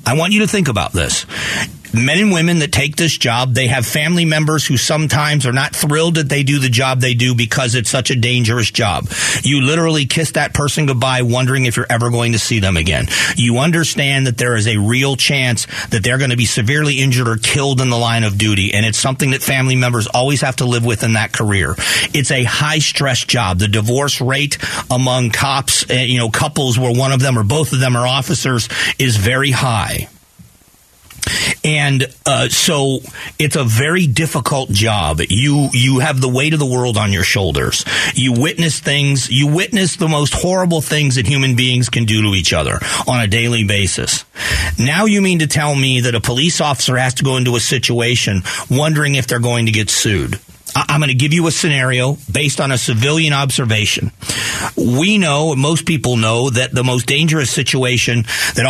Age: 40-59